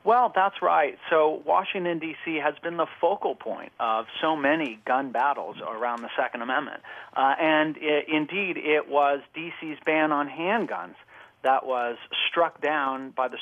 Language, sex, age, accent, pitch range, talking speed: English, male, 40-59, American, 135-165 Hz, 160 wpm